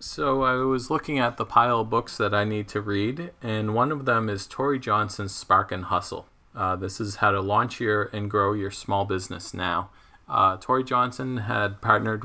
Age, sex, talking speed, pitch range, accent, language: 40-59, male, 205 wpm, 100-120 Hz, American, English